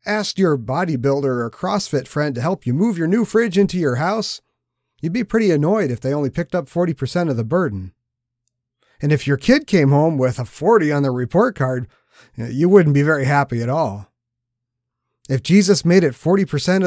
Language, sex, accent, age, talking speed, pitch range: English, male, American, 40-59, 190 wpm, 120-175 Hz